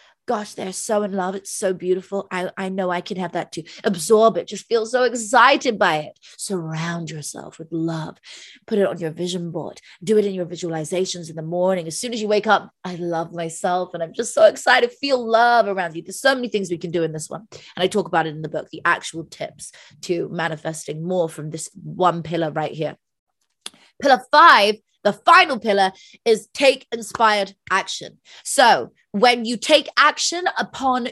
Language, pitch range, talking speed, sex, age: English, 170-220 Hz, 200 wpm, female, 20-39